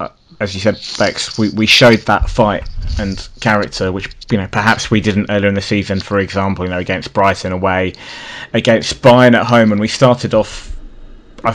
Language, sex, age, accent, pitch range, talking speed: English, male, 20-39, British, 100-125 Hz, 200 wpm